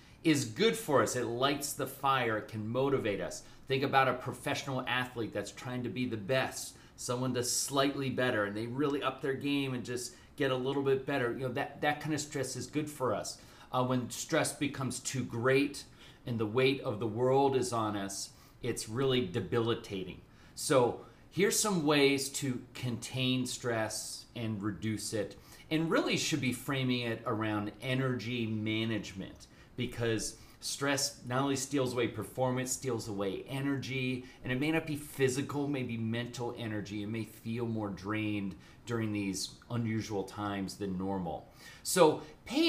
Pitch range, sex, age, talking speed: 110-135 Hz, male, 30-49, 170 wpm